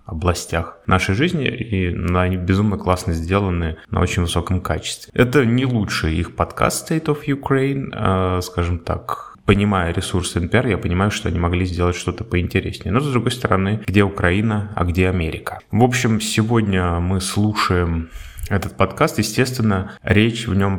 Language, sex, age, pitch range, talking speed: Russian, male, 20-39, 90-110 Hz, 155 wpm